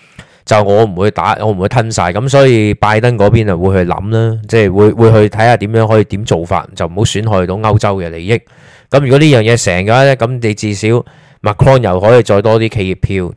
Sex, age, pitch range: male, 20-39, 100-125 Hz